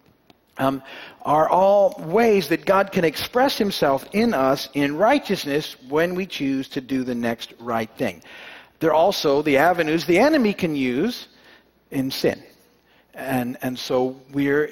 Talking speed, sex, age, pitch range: 145 wpm, male, 50-69, 125-160 Hz